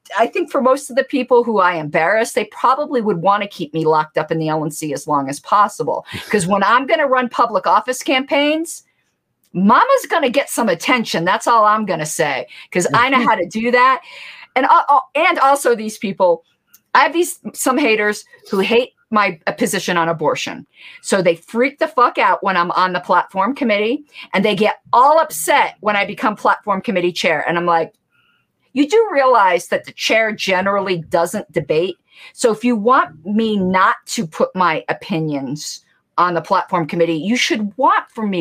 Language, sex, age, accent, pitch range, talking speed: English, female, 50-69, American, 185-270 Hz, 195 wpm